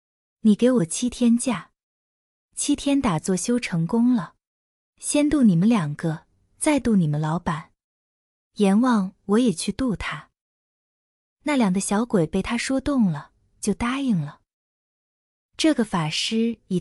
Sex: female